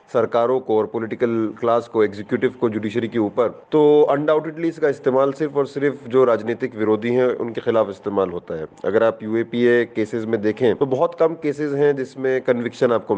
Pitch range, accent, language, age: 120-165 Hz, native, Hindi, 30-49